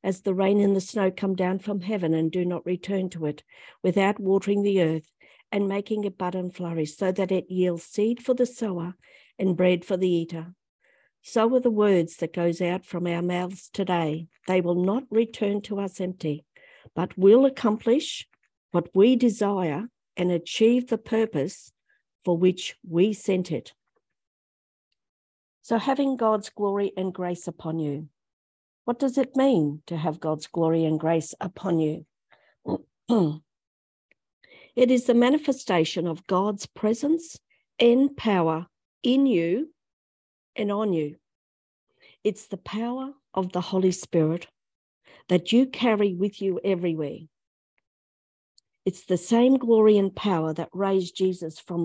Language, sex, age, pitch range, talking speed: English, female, 60-79, 165-215 Hz, 150 wpm